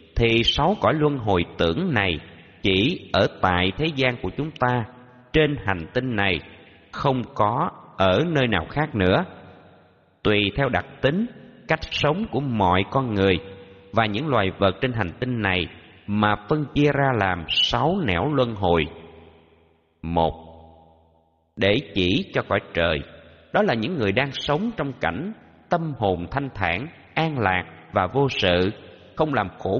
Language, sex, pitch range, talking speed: Vietnamese, male, 90-130 Hz, 160 wpm